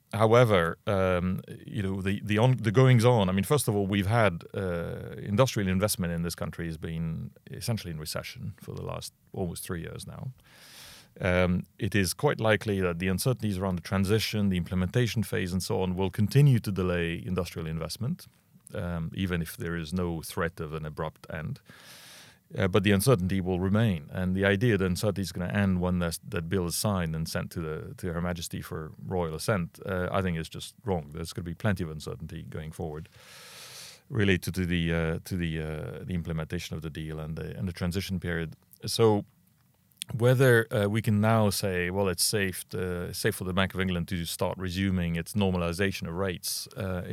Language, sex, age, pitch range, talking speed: English, male, 40-59, 85-105 Hz, 200 wpm